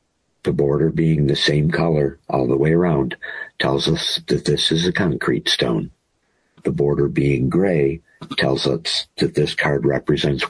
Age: 60-79